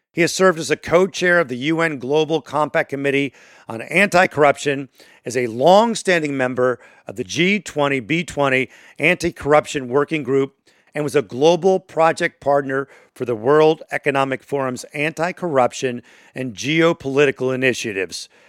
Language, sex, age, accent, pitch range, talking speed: English, male, 50-69, American, 130-155 Hz, 125 wpm